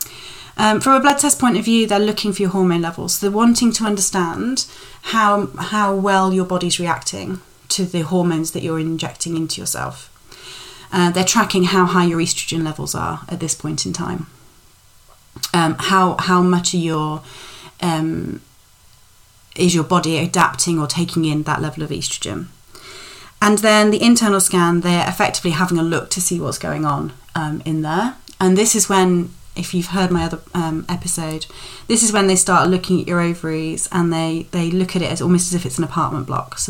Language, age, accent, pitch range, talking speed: English, 30-49, British, 160-195 Hz, 190 wpm